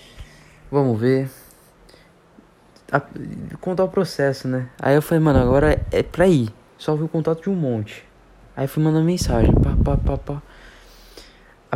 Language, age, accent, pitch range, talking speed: Portuguese, 20-39, Brazilian, 125-160 Hz, 145 wpm